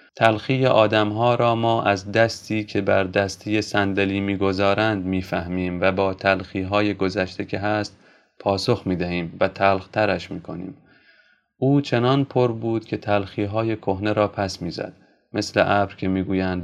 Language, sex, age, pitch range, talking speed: Persian, male, 30-49, 95-115 Hz, 150 wpm